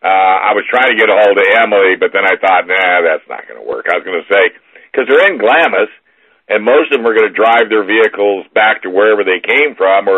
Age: 60-79